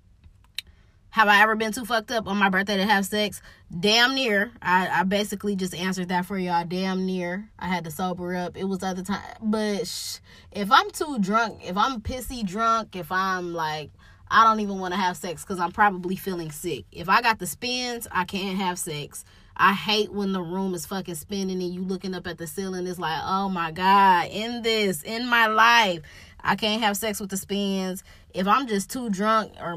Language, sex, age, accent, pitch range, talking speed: English, female, 20-39, American, 180-215 Hz, 215 wpm